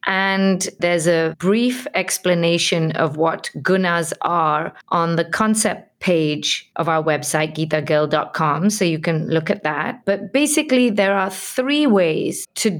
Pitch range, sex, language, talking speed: 165-210 Hz, female, English, 140 wpm